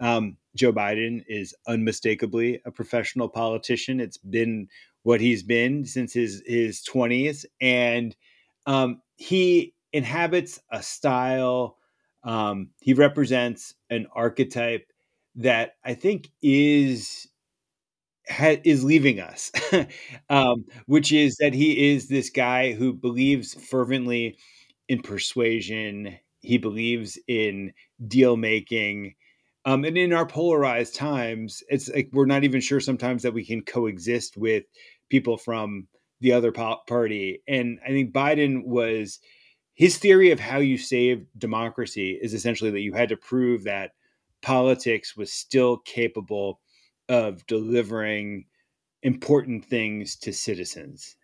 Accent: American